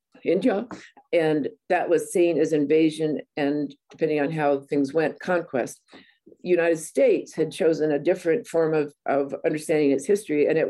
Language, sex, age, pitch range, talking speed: English, female, 50-69, 155-235 Hz, 155 wpm